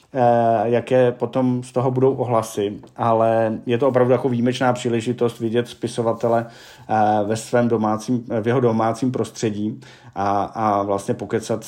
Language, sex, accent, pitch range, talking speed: Czech, male, native, 110-125 Hz, 135 wpm